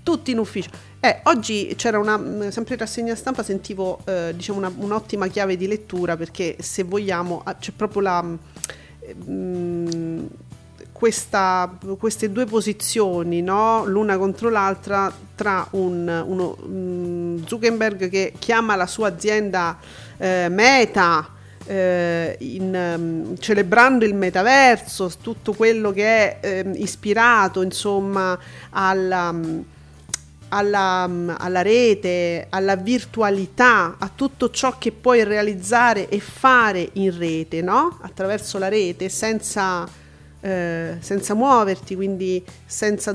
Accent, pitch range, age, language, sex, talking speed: native, 180-215 Hz, 40-59, Italian, female, 120 wpm